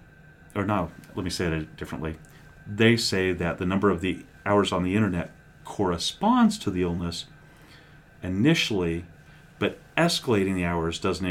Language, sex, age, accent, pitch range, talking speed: English, male, 40-59, American, 80-100 Hz, 150 wpm